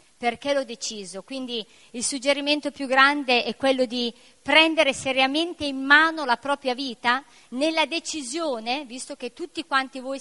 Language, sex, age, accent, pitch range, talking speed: Spanish, female, 50-69, Italian, 245-315 Hz, 145 wpm